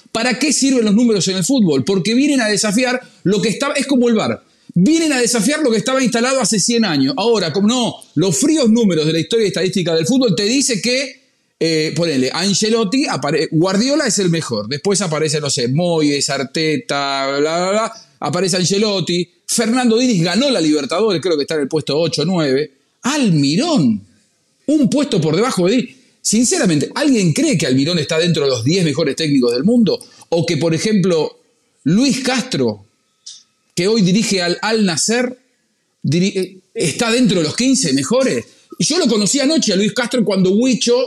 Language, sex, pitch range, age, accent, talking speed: English, male, 160-245 Hz, 40-59, Argentinian, 180 wpm